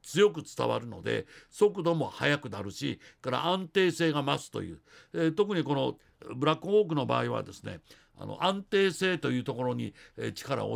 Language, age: Japanese, 60-79